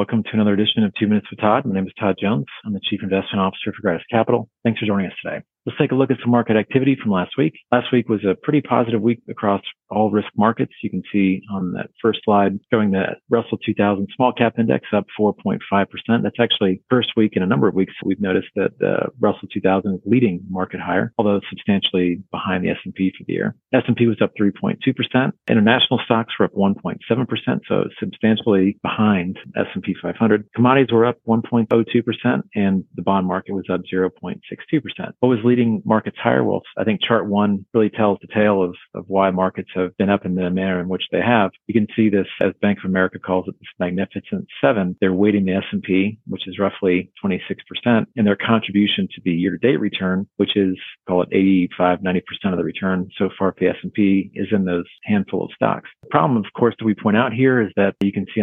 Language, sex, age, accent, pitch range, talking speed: English, male, 40-59, American, 95-115 Hz, 215 wpm